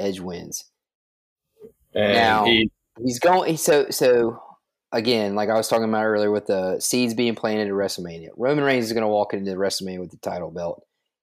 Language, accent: English, American